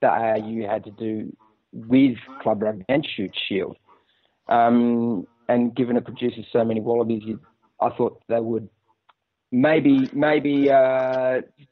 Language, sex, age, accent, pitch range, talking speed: English, male, 30-49, Australian, 115-140 Hz, 135 wpm